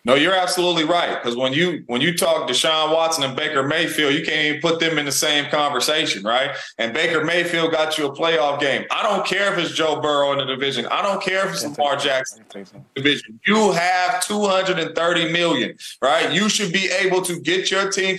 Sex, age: male, 20-39